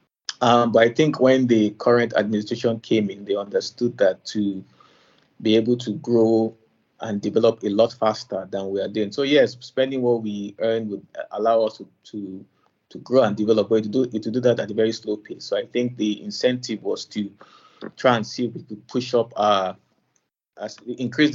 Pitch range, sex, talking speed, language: 105-120 Hz, male, 205 wpm, English